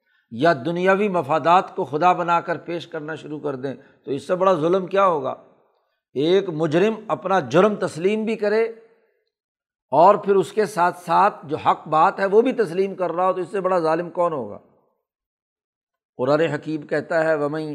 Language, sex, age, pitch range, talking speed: Urdu, male, 60-79, 150-205 Hz, 185 wpm